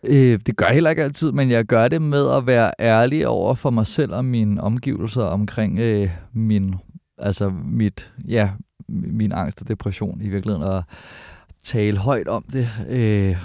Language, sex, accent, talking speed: Danish, male, native, 175 wpm